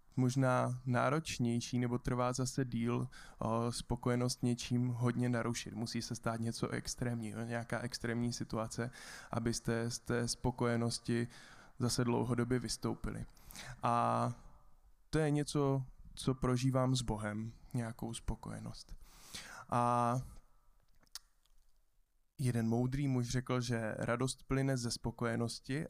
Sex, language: male, Czech